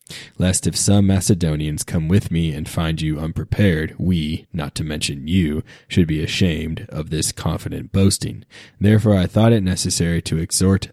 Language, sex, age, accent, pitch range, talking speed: English, male, 20-39, American, 80-95 Hz, 165 wpm